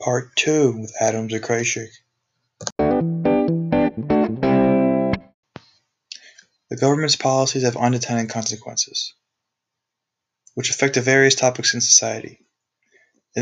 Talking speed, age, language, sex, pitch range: 80 wpm, 20-39, English, male, 115-125 Hz